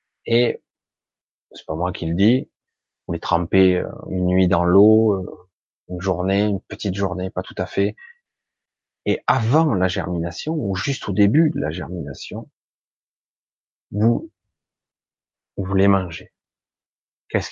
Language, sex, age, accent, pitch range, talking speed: French, male, 30-49, French, 95-115 Hz, 135 wpm